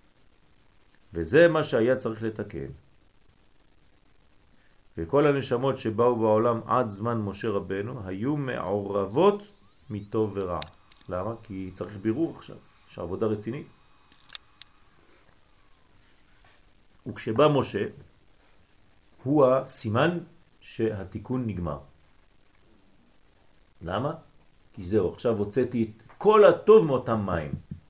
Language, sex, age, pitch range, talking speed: French, male, 40-59, 95-130 Hz, 85 wpm